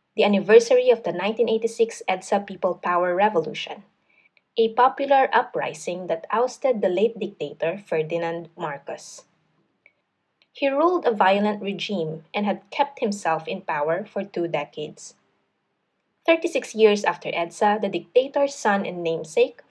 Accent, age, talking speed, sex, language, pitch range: Filipino, 20-39, 125 wpm, female, English, 180-245 Hz